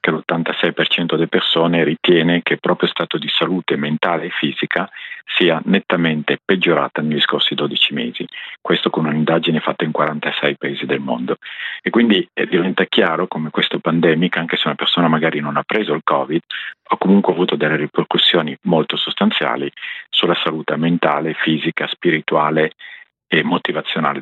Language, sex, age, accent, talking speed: Italian, male, 50-69, native, 150 wpm